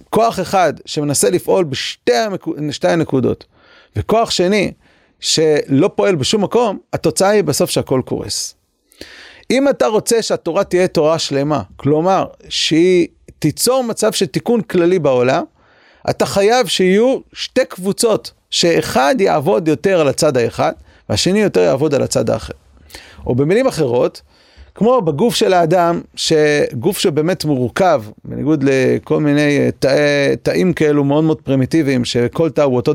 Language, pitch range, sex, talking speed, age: Hebrew, 150-210 Hz, male, 135 wpm, 40-59